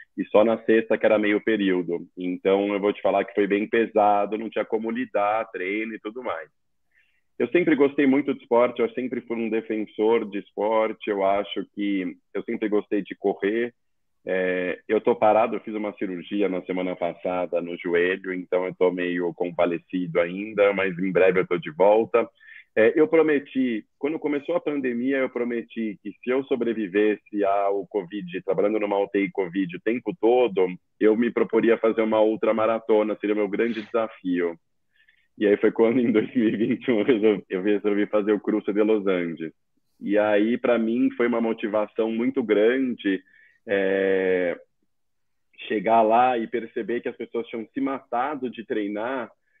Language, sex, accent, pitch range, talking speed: Portuguese, male, Brazilian, 95-115 Hz, 175 wpm